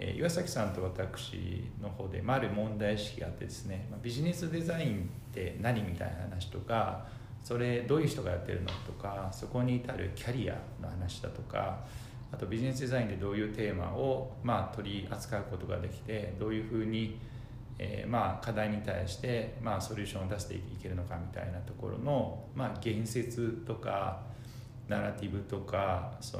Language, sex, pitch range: Japanese, male, 100-125 Hz